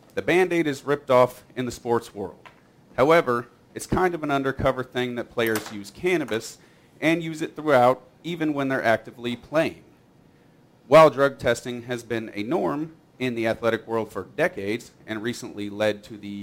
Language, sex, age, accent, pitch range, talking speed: English, male, 40-59, American, 110-140 Hz, 170 wpm